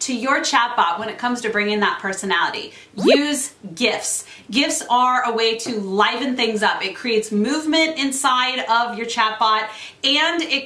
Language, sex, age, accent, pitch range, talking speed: English, female, 30-49, American, 215-270 Hz, 165 wpm